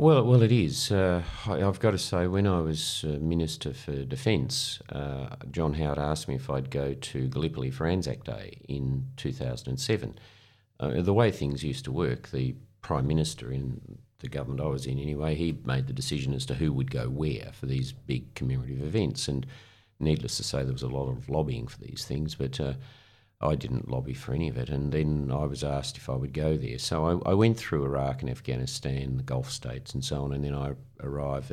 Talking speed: 215 wpm